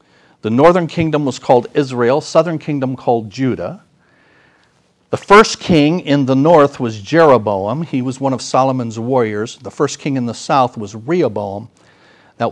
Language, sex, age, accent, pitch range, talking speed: English, male, 50-69, American, 95-140 Hz, 160 wpm